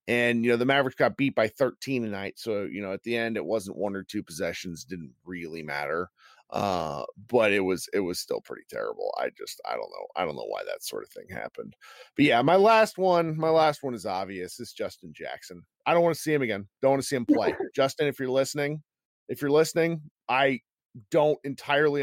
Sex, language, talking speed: male, English, 230 wpm